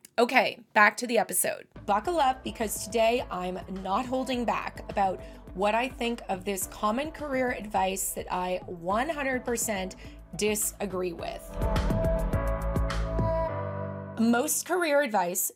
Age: 20-39